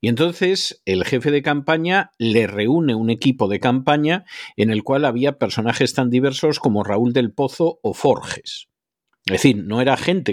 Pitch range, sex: 110-150 Hz, male